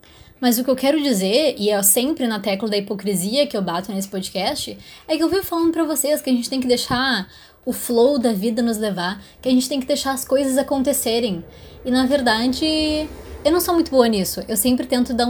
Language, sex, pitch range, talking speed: Portuguese, female, 205-265 Hz, 230 wpm